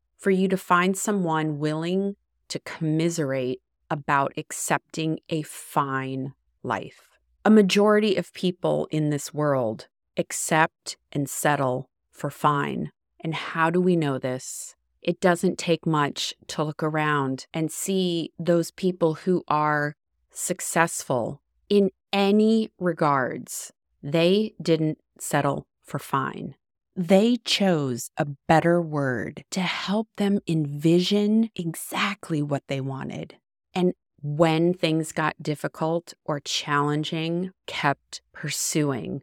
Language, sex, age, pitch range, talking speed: English, female, 30-49, 145-185 Hz, 115 wpm